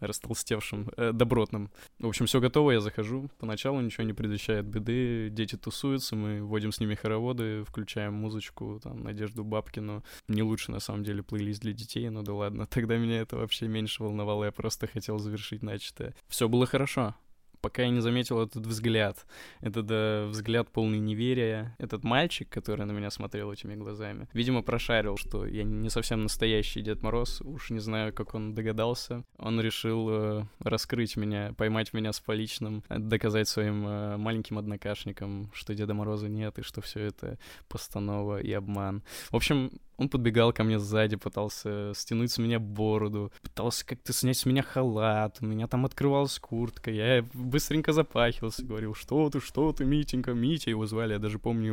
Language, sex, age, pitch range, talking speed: Russian, male, 20-39, 105-115 Hz, 170 wpm